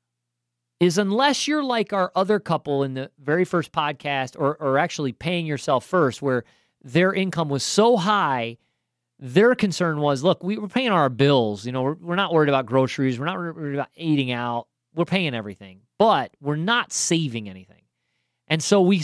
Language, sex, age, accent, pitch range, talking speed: English, male, 40-59, American, 120-185 Hz, 185 wpm